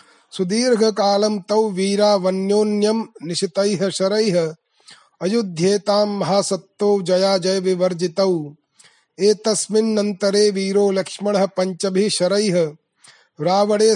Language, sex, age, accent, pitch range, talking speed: Hindi, male, 30-49, native, 185-205 Hz, 55 wpm